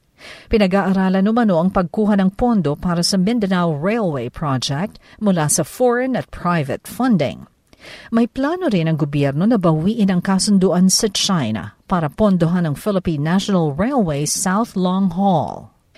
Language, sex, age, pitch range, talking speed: Filipino, female, 50-69, 160-210 Hz, 140 wpm